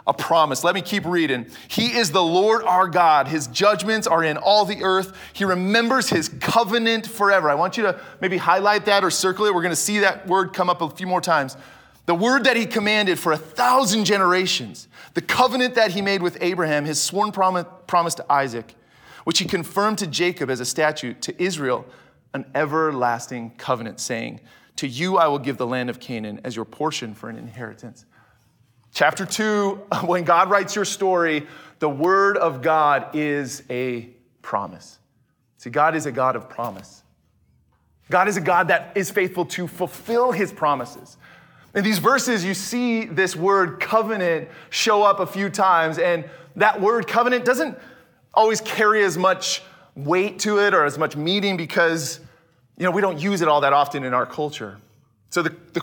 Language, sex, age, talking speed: English, male, 30-49, 185 wpm